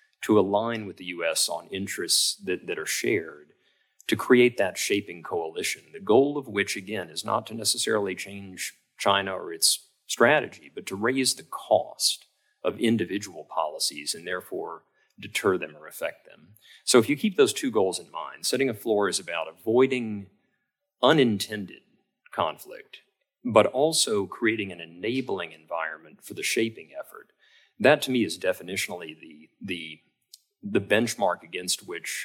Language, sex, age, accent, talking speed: English, male, 40-59, American, 155 wpm